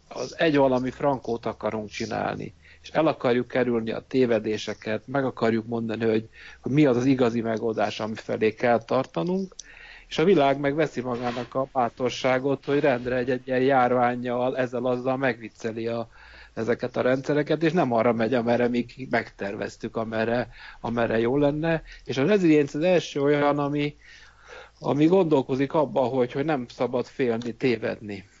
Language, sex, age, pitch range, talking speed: Hungarian, male, 60-79, 115-135 Hz, 145 wpm